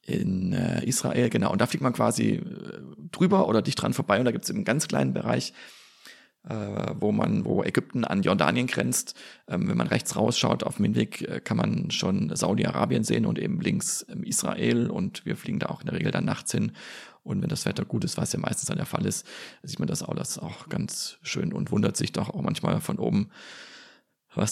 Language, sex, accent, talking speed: German, male, German, 220 wpm